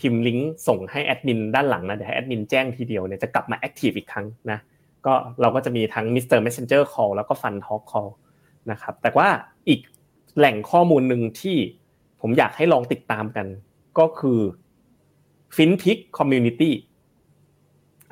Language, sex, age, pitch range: Thai, male, 20-39, 110-140 Hz